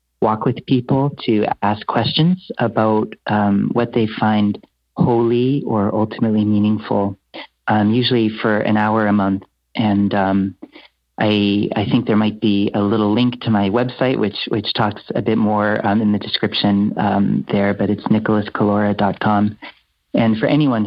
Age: 30-49